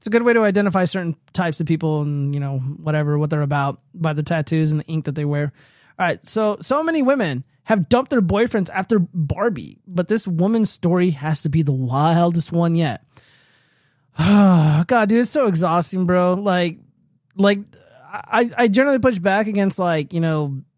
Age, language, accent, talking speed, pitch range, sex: 20-39, English, American, 190 wpm, 155-200 Hz, male